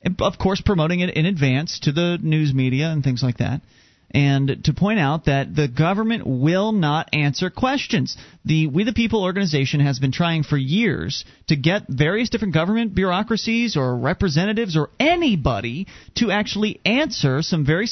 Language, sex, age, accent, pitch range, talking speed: English, male, 30-49, American, 150-220 Hz, 165 wpm